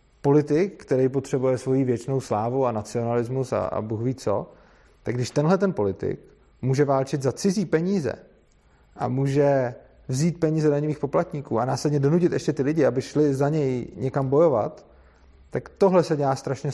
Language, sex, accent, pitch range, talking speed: Czech, male, native, 120-155 Hz, 165 wpm